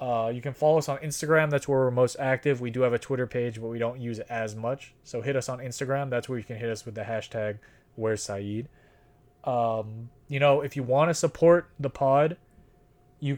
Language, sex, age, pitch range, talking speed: English, male, 20-39, 120-150 Hz, 235 wpm